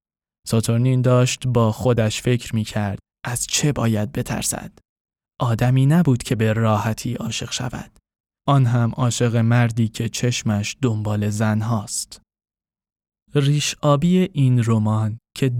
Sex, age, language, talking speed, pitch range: male, 10-29, Persian, 125 wpm, 110-135 Hz